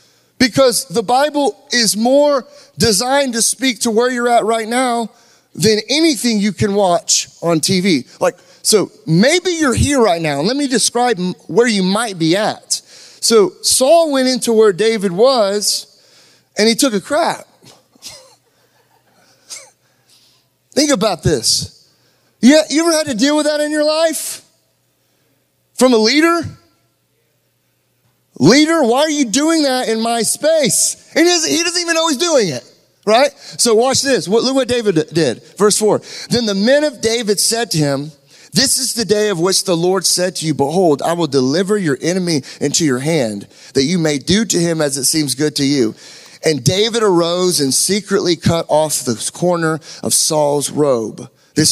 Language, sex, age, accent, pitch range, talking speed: English, male, 30-49, American, 165-265 Hz, 170 wpm